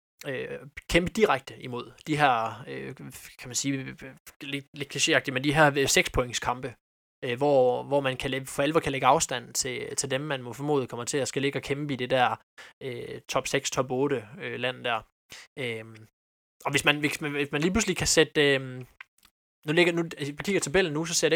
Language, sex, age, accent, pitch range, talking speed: Danish, male, 20-39, native, 125-150 Hz, 210 wpm